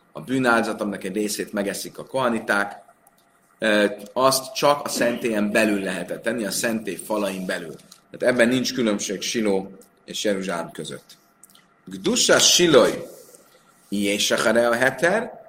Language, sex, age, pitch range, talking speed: Hungarian, male, 30-49, 105-135 Hz, 115 wpm